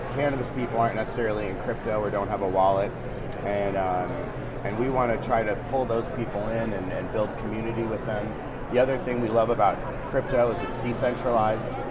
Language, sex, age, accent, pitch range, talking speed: English, male, 30-49, American, 100-120 Hz, 195 wpm